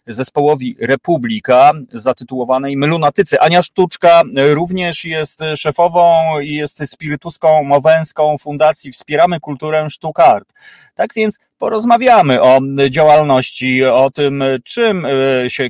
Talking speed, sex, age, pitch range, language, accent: 105 wpm, male, 30-49, 130-175 Hz, Polish, native